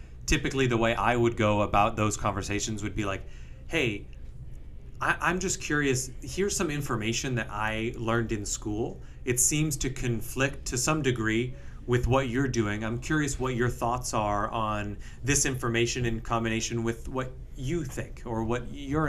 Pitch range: 105-130 Hz